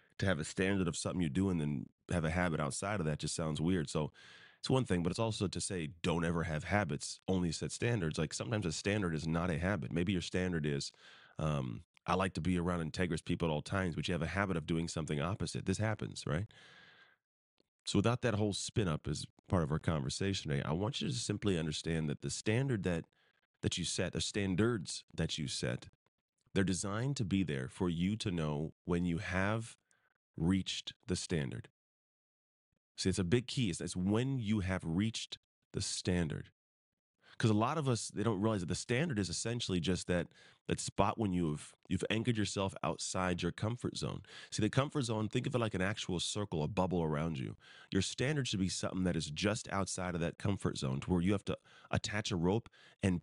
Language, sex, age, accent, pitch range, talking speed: English, male, 30-49, American, 85-105 Hz, 215 wpm